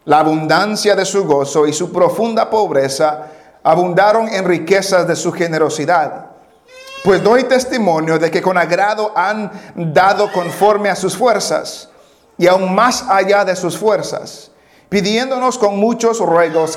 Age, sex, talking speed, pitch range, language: 50-69, male, 140 wpm, 170-220 Hz, English